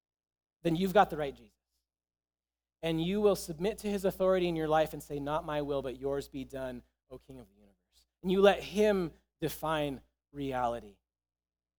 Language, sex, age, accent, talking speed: English, male, 30-49, American, 185 wpm